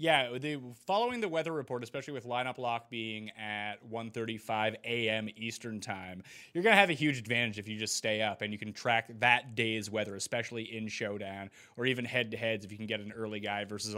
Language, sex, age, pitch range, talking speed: English, male, 30-49, 110-145 Hz, 205 wpm